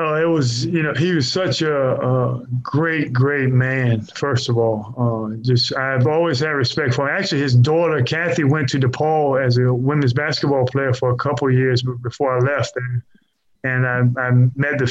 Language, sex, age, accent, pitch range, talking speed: English, male, 20-39, American, 125-145 Hz, 200 wpm